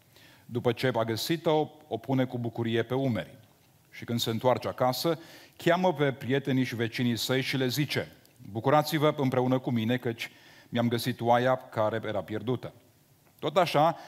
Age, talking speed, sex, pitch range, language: 40-59, 160 wpm, male, 120-145 Hz, Romanian